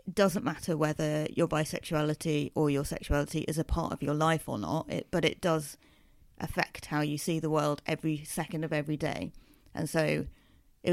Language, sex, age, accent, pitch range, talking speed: English, female, 30-49, British, 155-185 Hz, 190 wpm